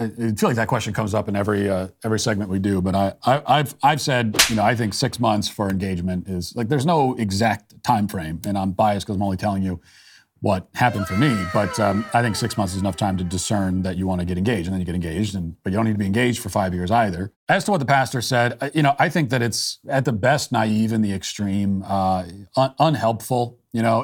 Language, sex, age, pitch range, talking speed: English, male, 40-59, 100-125 Hz, 260 wpm